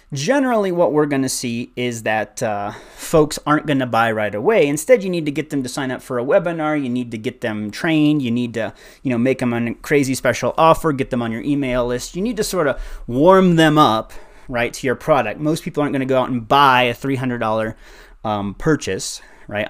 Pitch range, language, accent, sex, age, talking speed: 115-150 Hz, English, American, male, 30-49, 240 wpm